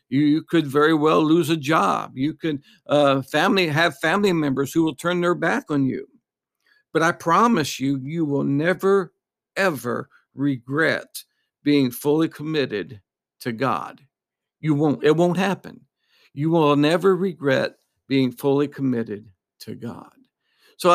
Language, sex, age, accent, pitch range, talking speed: English, male, 60-79, American, 140-170 Hz, 145 wpm